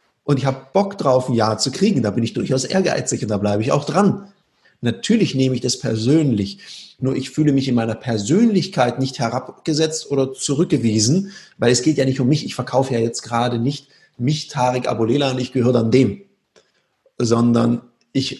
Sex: male